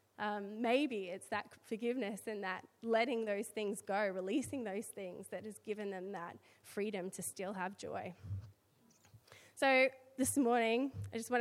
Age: 20-39